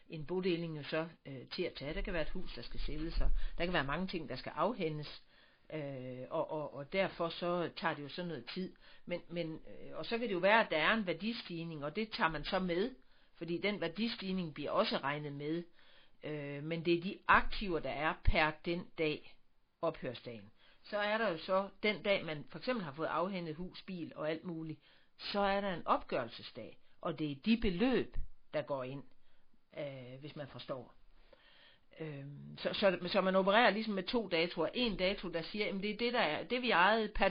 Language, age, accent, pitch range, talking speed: Danish, 60-79, native, 150-195 Hz, 210 wpm